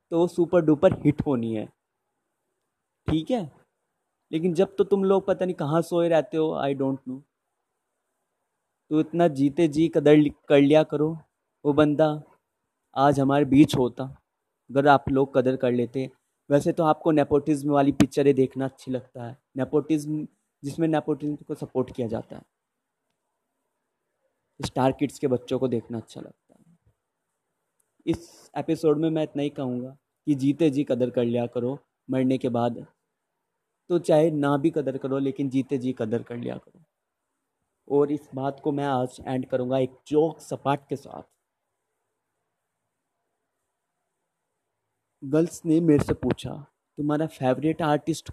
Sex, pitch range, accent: male, 130-160 Hz, native